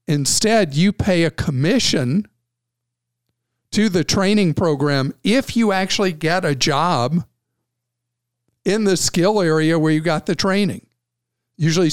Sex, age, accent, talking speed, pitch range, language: male, 50-69, American, 125 wpm, 120-175 Hz, English